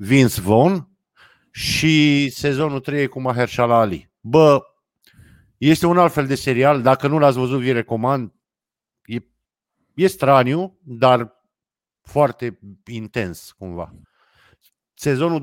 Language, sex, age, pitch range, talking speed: Romanian, male, 50-69, 115-145 Hz, 115 wpm